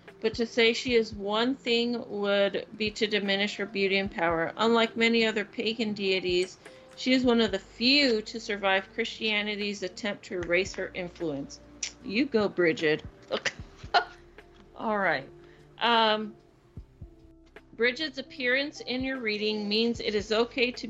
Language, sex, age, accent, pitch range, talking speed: English, female, 40-59, American, 195-230 Hz, 145 wpm